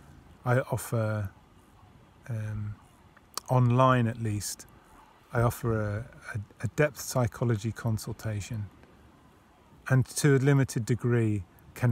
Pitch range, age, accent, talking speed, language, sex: 110-125 Hz, 30-49, British, 95 wpm, English, male